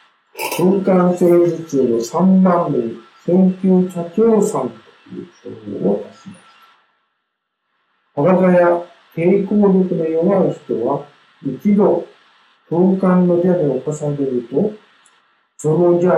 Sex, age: male, 50-69